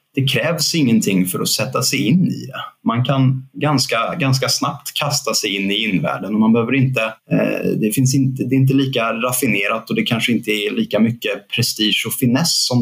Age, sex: 30-49, male